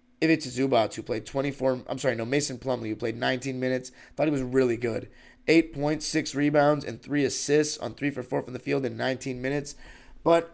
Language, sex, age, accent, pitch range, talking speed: English, male, 30-49, American, 120-145 Hz, 205 wpm